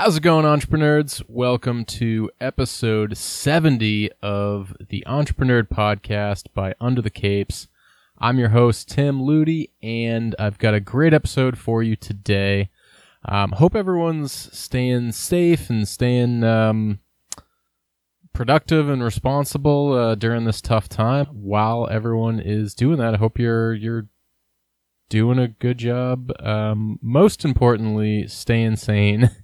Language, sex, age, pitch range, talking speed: English, male, 20-39, 100-125 Hz, 130 wpm